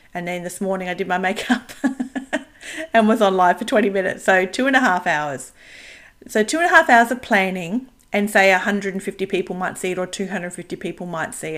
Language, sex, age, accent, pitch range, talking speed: English, female, 40-59, Australian, 180-225 Hz, 210 wpm